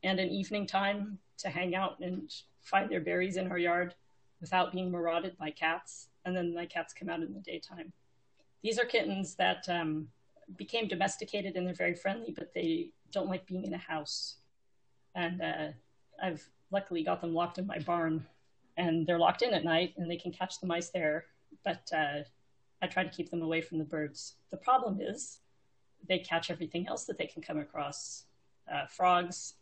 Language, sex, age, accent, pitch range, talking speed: English, female, 30-49, American, 155-195 Hz, 195 wpm